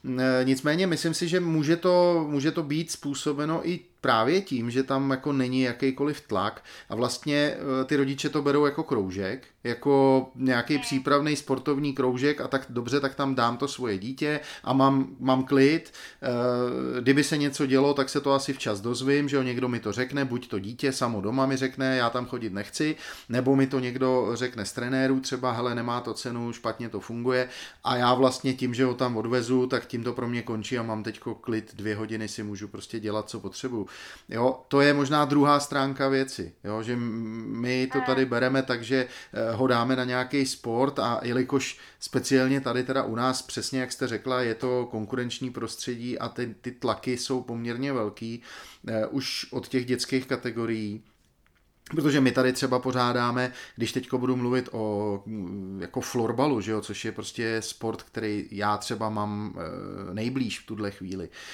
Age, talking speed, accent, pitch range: 30-49, 180 wpm, native, 115-135 Hz